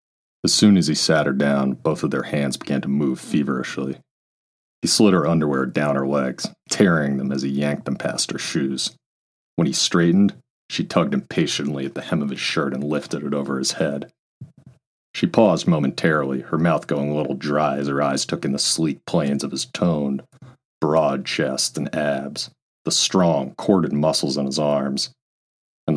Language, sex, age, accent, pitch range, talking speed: English, male, 40-59, American, 70-75 Hz, 185 wpm